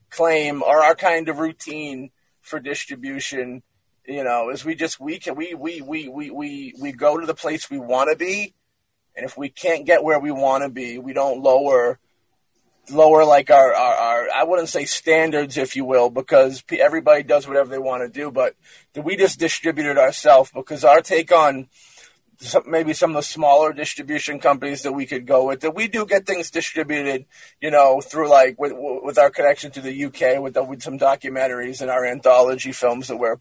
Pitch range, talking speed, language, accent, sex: 130-165 Hz, 205 wpm, English, American, male